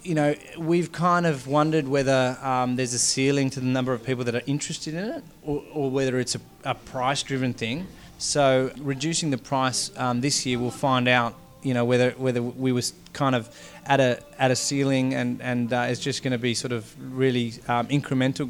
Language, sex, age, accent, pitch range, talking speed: English, male, 20-39, Australian, 120-140 Hz, 210 wpm